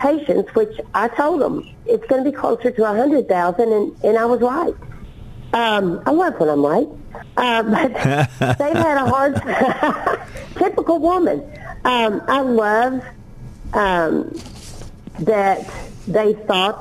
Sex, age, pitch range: female, 50-69, 200-255 Hz